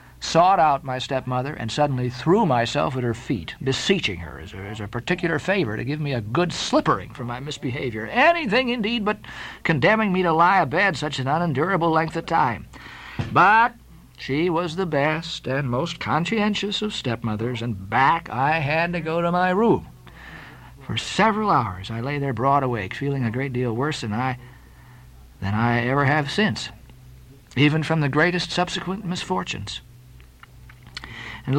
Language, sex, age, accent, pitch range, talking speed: English, male, 50-69, American, 115-170 Hz, 165 wpm